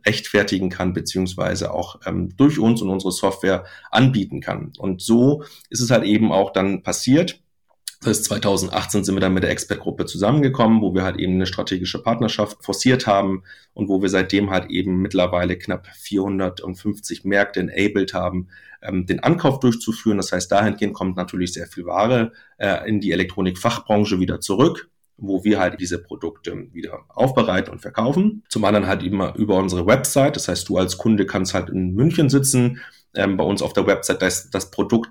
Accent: German